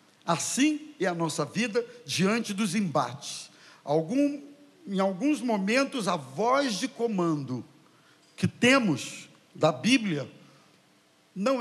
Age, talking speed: 60-79, 110 wpm